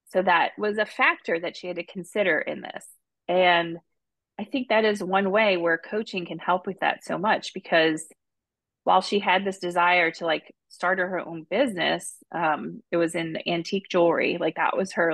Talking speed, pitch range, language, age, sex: 195 wpm, 165-190 Hz, English, 30-49, female